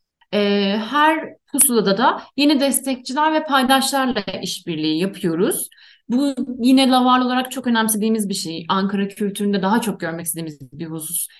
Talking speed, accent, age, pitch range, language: 130 wpm, native, 30-49, 195-265 Hz, Turkish